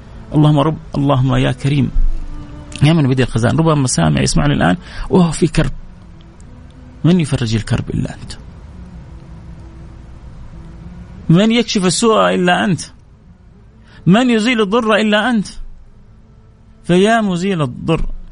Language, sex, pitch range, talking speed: Arabic, male, 115-180 Hz, 110 wpm